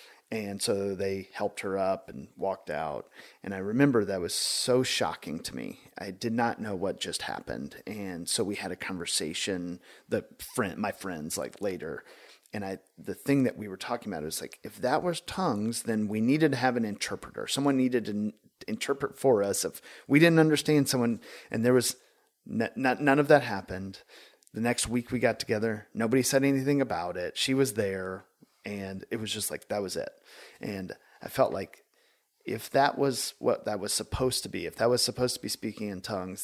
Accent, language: American, English